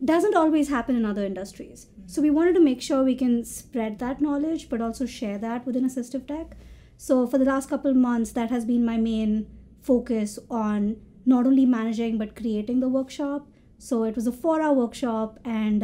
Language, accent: English, Indian